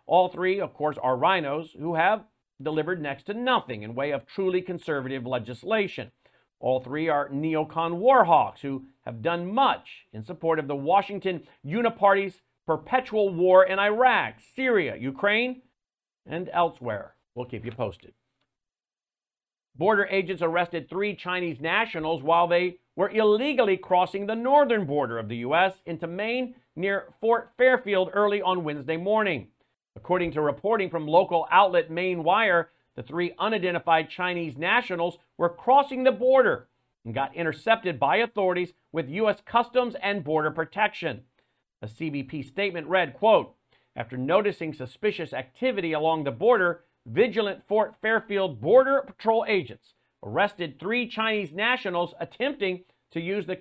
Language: English